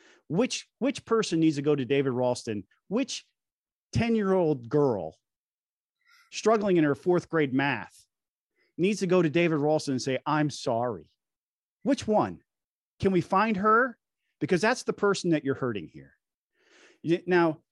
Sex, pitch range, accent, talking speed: male, 140-200 Hz, American, 145 wpm